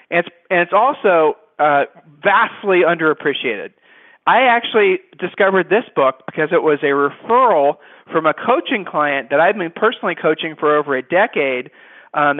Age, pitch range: 40-59, 155-200 Hz